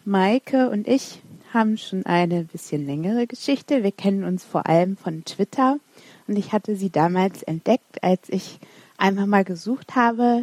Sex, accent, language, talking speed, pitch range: female, German, German, 160 wpm, 180-220 Hz